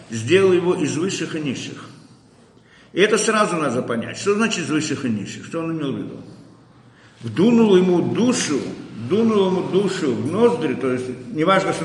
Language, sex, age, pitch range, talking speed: Russian, male, 50-69, 145-205 Hz, 170 wpm